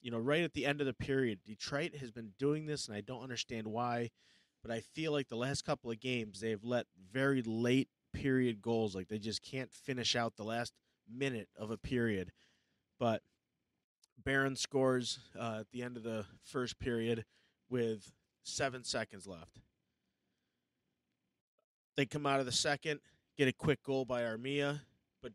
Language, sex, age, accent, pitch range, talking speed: English, male, 30-49, American, 110-135 Hz, 175 wpm